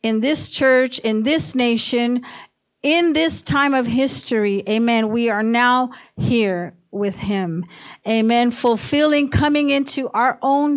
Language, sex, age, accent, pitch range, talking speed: English, female, 50-69, American, 220-275 Hz, 135 wpm